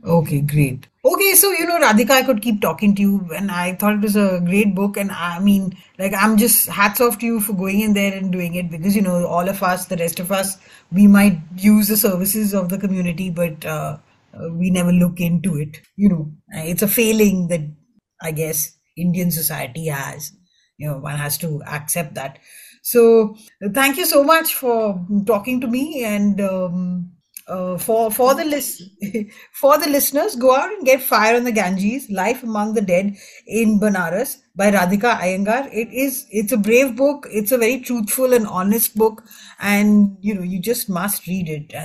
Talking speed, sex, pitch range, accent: 200 wpm, female, 175-220 Hz, Indian